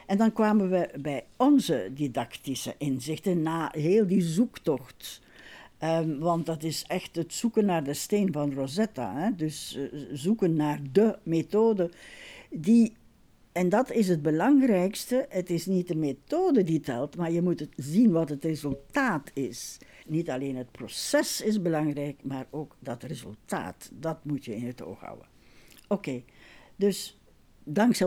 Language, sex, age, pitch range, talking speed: Dutch, female, 60-79, 145-195 Hz, 150 wpm